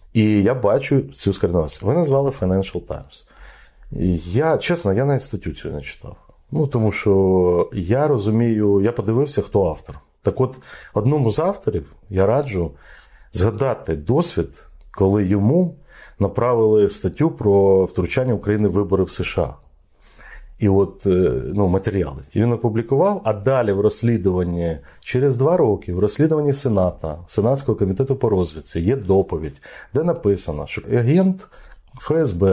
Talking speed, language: 135 wpm, Ukrainian